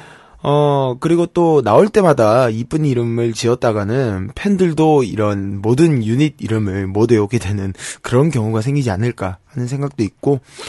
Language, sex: Korean, male